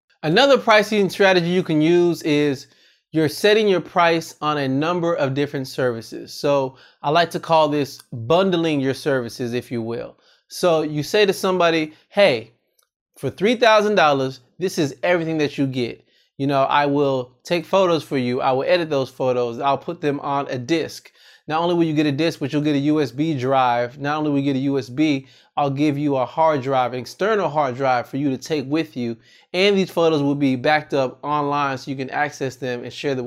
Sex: male